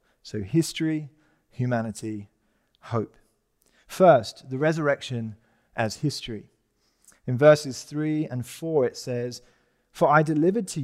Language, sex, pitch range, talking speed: English, male, 115-150 Hz, 110 wpm